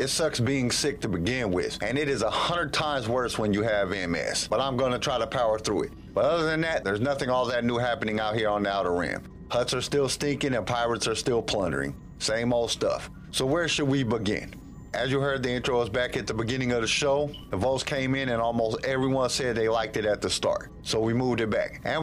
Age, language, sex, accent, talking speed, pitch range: 50-69, English, male, American, 255 wpm, 115-135 Hz